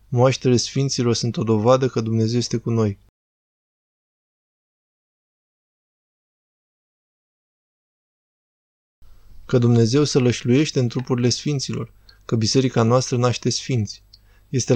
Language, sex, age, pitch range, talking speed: Romanian, male, 20-39, 110-130 Hz, 95 wpm